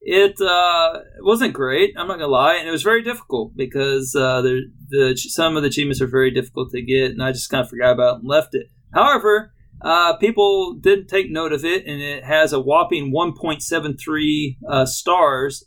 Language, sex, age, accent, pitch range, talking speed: English, male, 40-59, American, 130-175 Hz, 205 wpm